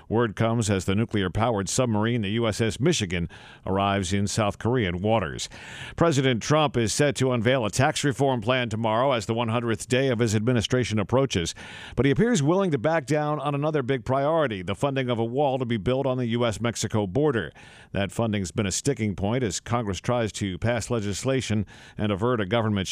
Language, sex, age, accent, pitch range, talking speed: English, male, 50-69, American, 110-145 Hz, 190 wpm